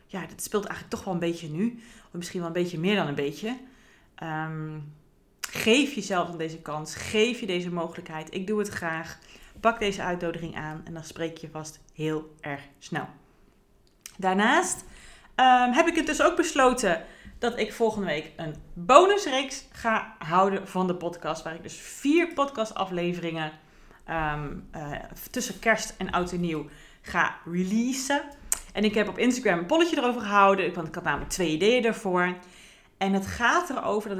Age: 30-49